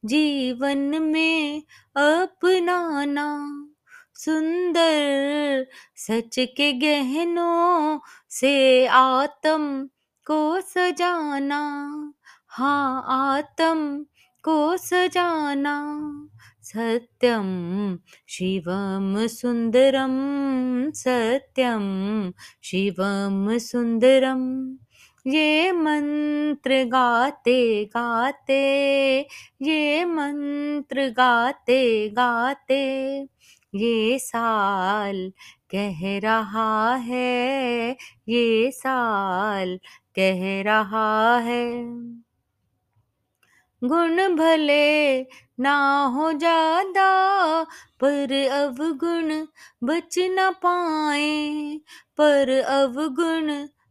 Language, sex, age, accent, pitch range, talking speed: Hindi, female, 20-39, native, 235-300 Hz, 55 wpm